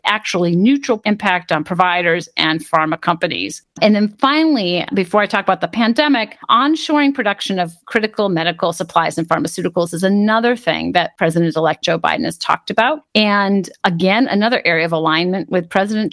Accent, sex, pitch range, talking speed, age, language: American, female, 175-230 Hz, 160 wpm, 40-59, English